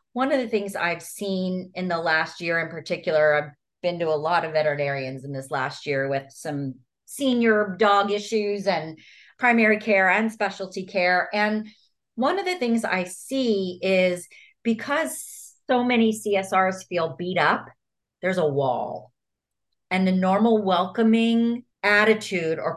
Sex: female